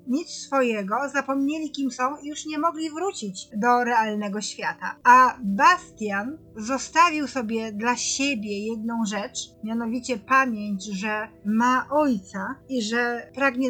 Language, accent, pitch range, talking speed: Polish, native, 225-270 Hz, 125 wpm